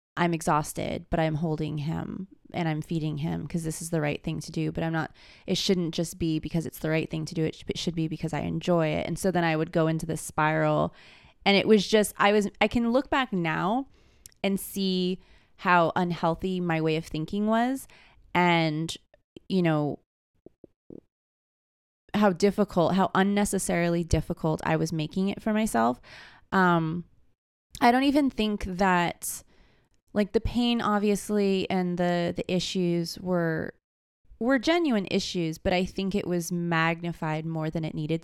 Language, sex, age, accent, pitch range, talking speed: English, female, 20-39, American, 160-195 Hz, 175 wpm